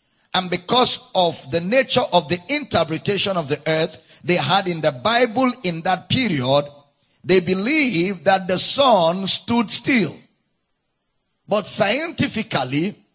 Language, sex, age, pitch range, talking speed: English, male, 50-69, 170-220 Hz, 130 wpm